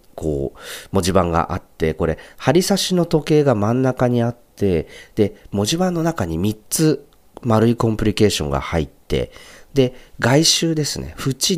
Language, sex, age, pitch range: Japanese, male, 40-59, 80-120 Hz